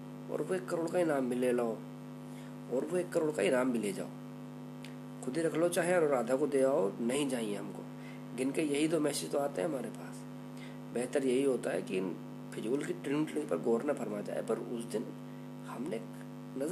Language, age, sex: Hindi, 50-69, male